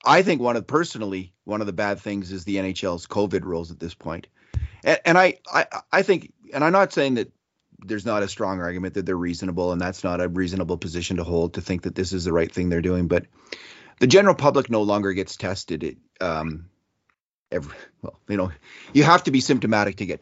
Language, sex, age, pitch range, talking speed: English, male, 30-49, 90-125 Hz, 225 wpm